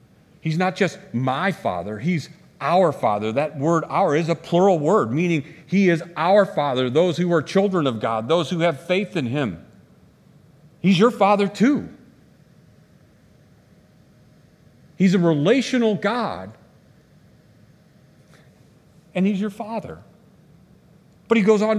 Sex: male